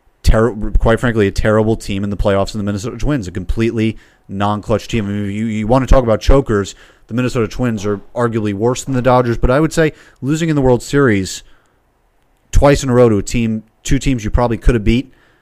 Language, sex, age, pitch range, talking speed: English, male, 30-49, 105-125 Hz, 230 wpm